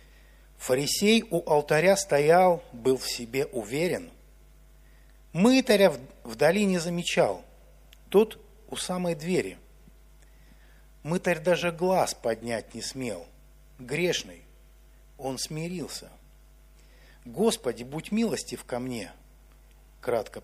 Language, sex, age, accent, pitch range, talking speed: Russian, male, 50-69, native, 140-190 Hz, 90 wpm